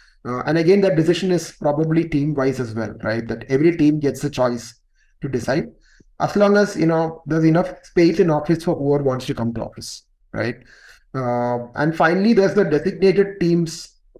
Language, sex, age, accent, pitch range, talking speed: English, male, 30-49, Indian, 125-165 Hz, 190 wpm